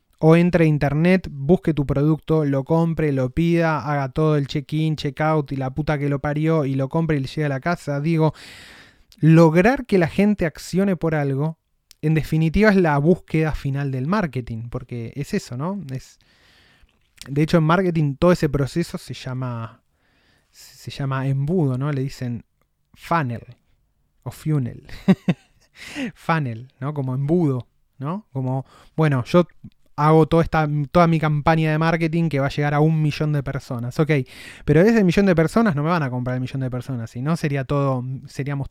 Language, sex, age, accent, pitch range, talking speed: Spanish, male, 20-39, Argentinian, 130-165 Hz, 175 wpm